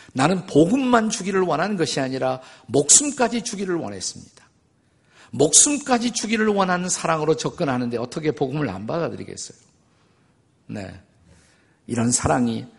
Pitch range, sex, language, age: 125-185 Hz, male, Korean, 50-69